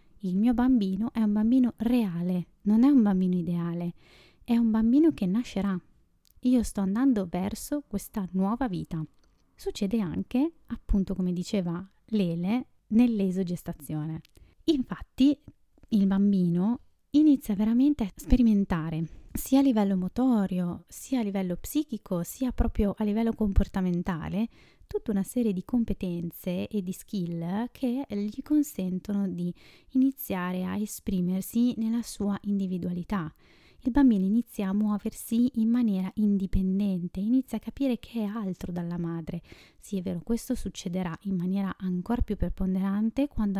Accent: native